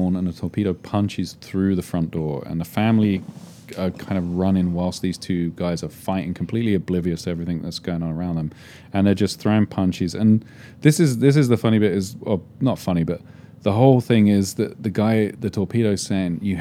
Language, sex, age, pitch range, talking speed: English, male, 30-49, 85-105 Hz, 210 wpm